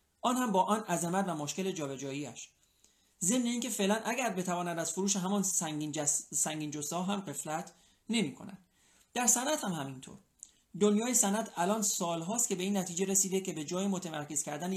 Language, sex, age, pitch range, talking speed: Persian, male, 30-49, 160-205 Hz, 170 wpm